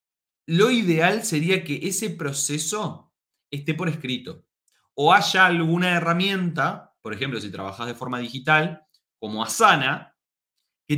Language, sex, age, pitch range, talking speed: Spanish, male, 30-49, 115-180 Hz, 125 wpm